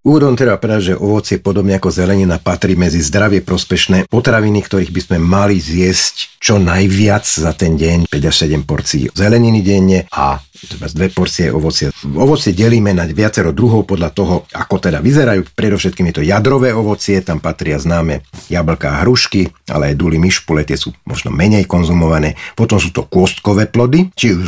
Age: 50-69